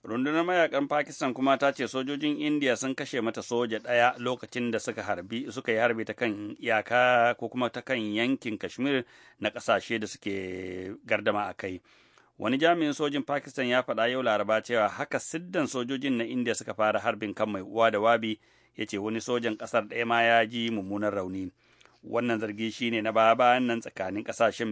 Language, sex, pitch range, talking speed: English, male, 110-125 Hz, 160 wpm